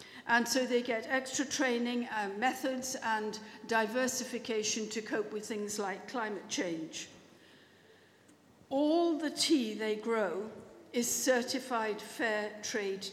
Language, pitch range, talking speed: English, 220-275 Hz, 120 wpm